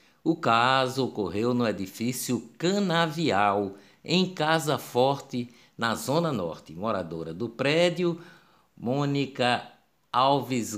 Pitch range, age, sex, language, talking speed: 115-160 Hz, 50-69, male, Portuguese, 95 wpm